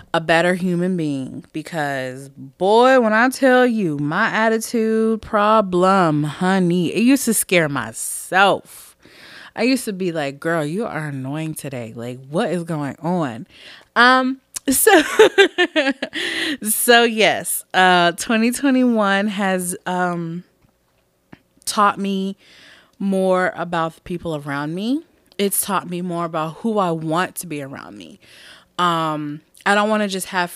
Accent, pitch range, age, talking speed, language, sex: American, 165-210 Hz, 20-39, 135 wpm, English, female